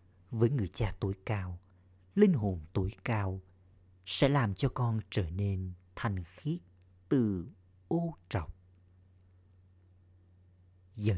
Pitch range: 90-110 Hz